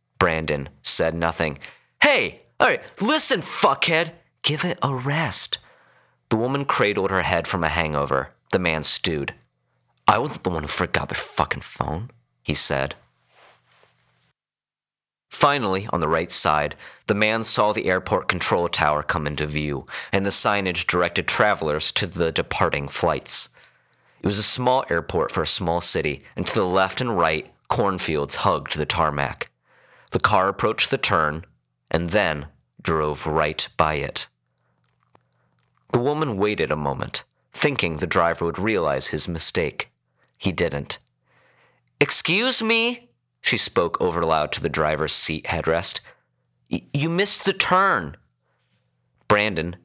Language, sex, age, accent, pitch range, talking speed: English, male, 30-49, American, 75-105 Hz, 140 wpm